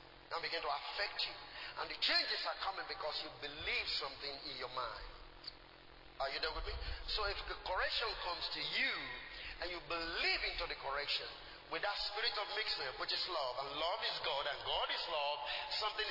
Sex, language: male, English